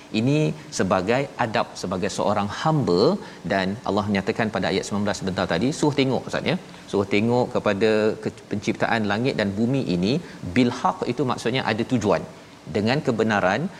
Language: Malayalam